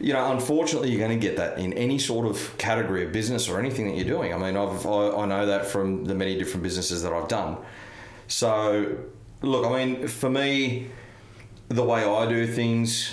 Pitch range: 90-115 Hz